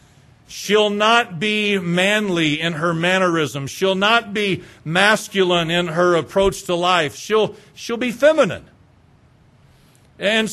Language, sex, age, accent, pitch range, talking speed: English, male, 50-69, American, 135-205 Hz, 120 wpm